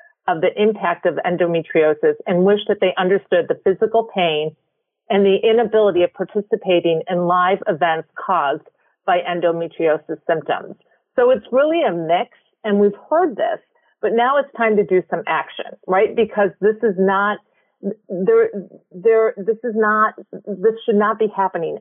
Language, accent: English, American